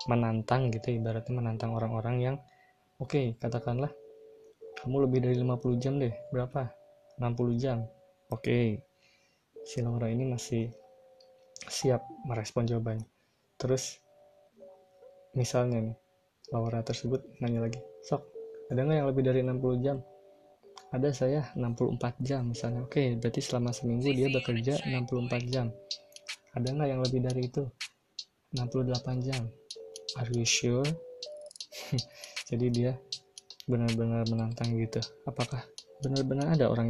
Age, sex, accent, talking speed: 20-39, male, native, 125 wpm